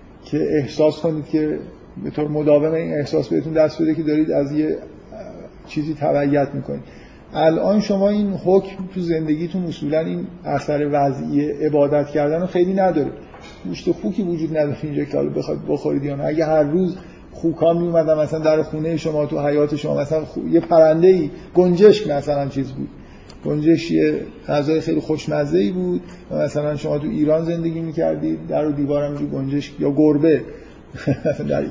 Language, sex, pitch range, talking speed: Persian, male, 140-160 Hz, 155 wpm